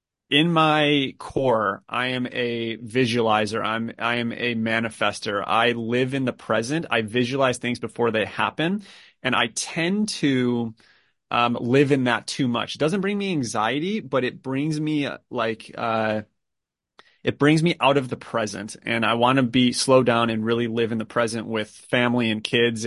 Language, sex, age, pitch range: English, male, 30-49, 115-130 Hz